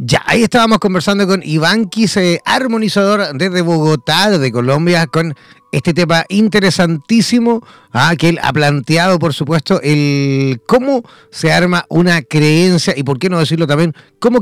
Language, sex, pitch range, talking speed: Spanish, male, 145-190 Hz, 150 wpm